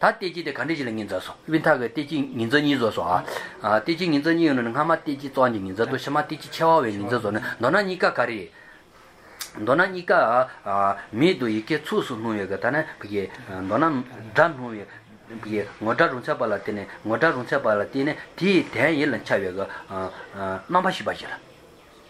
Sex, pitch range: male, 115-165 Hz